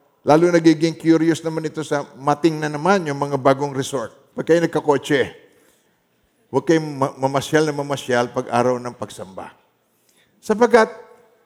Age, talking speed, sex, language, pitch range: 50-69, 135 wpm, male, Filipino, 145-190 Hz